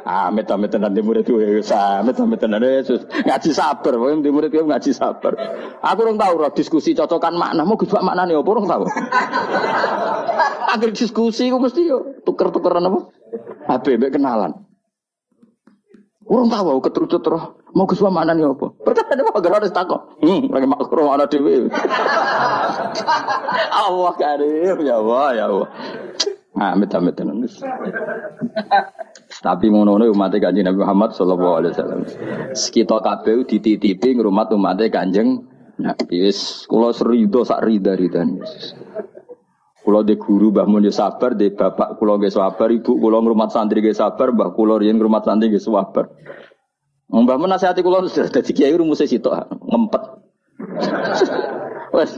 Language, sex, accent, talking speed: Indonesian, male, native, 125 wpm